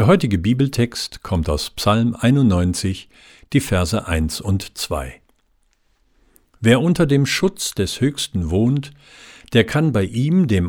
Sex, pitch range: male, 90-130 Hz